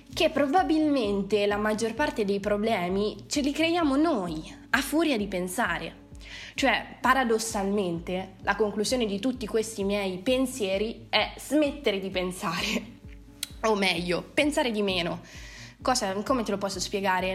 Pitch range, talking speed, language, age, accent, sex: 185-235 Hz, 135 wpm, Italian, 20-39, native, female